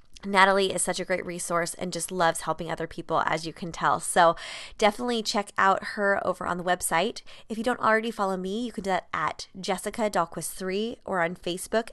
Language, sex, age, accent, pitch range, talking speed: English, female, 20-39, American, 185-220 Hz, 200 wpm